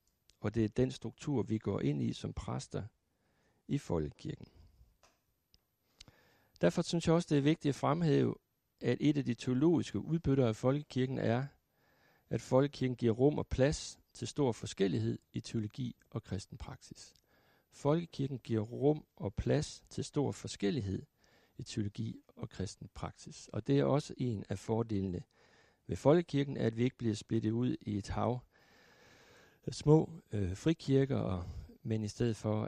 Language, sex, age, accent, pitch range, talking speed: Danish, male, 60-79, native, 105-140 Hz, 155 wpm